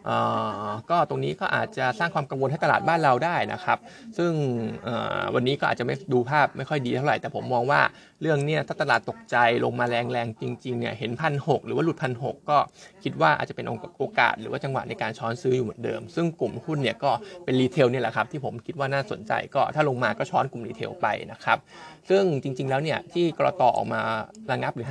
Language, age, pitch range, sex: Thai, 20-39, 120-155 Hz, male